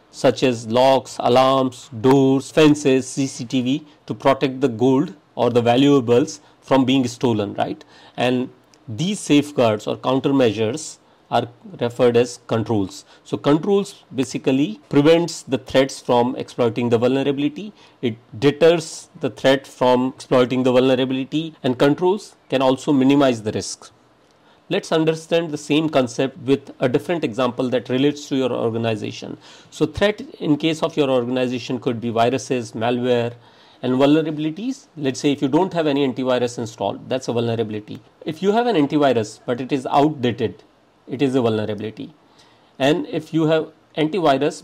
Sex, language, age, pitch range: male, English, 50-69, 125-150 Hz